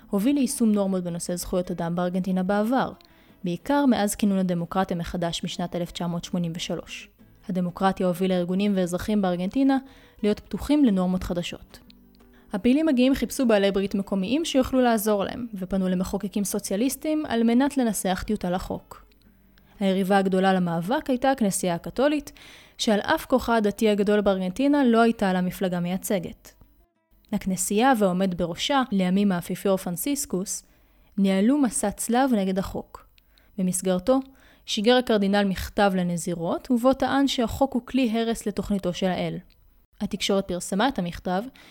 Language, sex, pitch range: Hebrew, female, 185-240 Hz